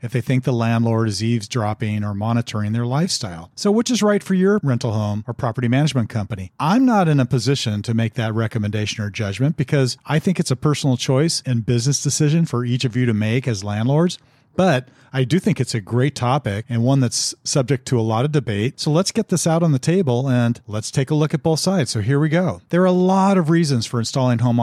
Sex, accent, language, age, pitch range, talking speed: male, American, English, 40-59, 115-155 Hz, 240 wpm